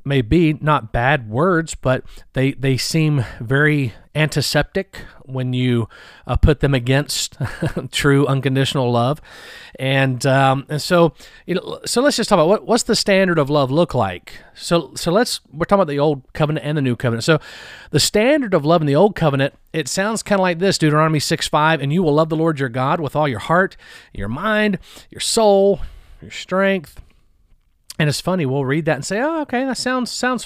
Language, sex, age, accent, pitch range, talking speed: English, male, 40-59, American, 135-185 Hz, 200 wpm